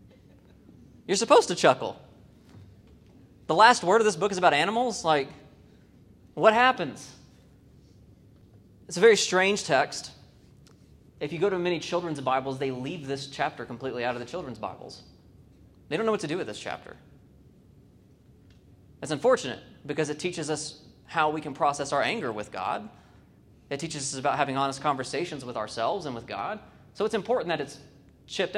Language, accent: English, American